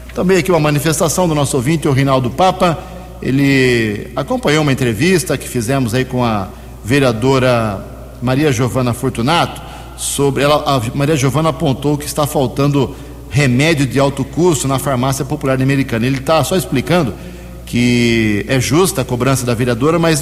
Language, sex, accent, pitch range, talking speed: Portuguese, male, Brazilian, 130-175 Hz, 155 wpm